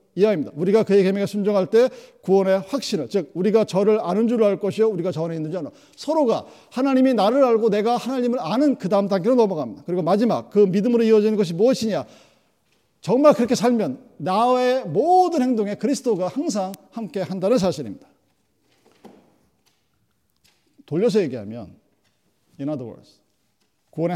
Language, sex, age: Korean, male, 40-59